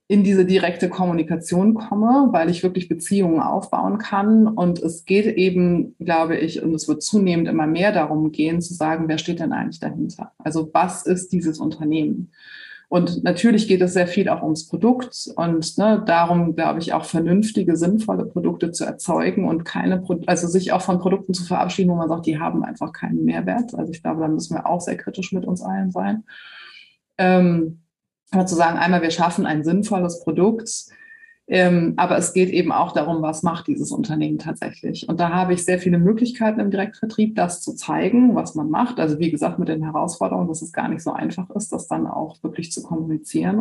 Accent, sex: German, female